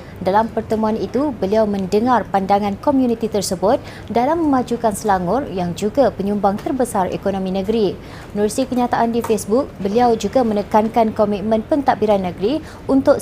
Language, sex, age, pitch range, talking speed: Malay, female, 20-39, 205-250 Hz, 125 wpm